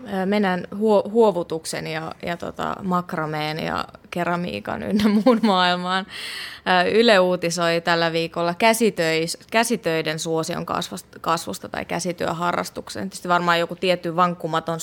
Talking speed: 115 wpm